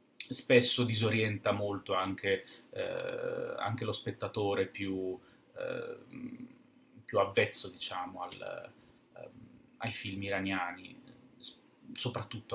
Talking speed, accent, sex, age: 90 wpm, native, male, 30-49